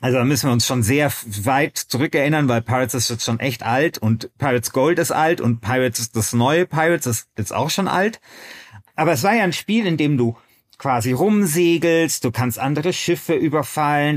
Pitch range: 125-165 Hz